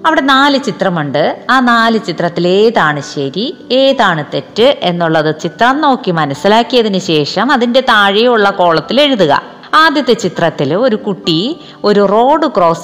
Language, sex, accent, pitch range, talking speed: Malayalam, female, native, 160-230 Hz, 115 wpm